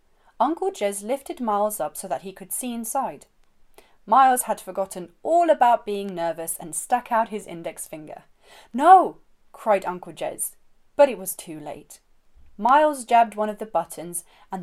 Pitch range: 180-245 Hz